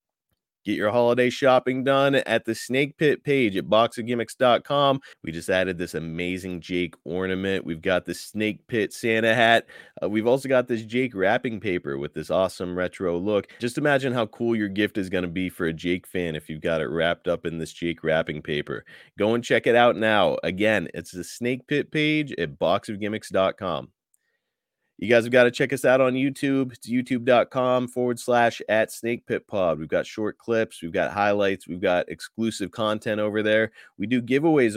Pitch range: 90-120 Hz